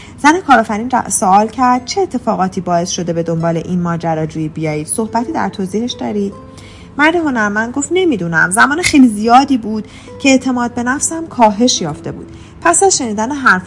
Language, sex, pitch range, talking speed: Persian, female, 180-255 Hz, 155 wpm